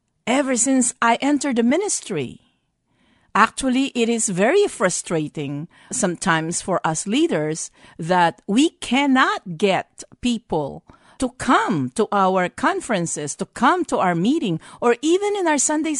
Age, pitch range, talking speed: 50-69, 160-240 Hz, 130 wpm